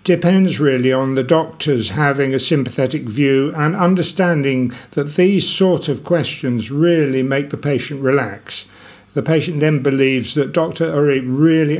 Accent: British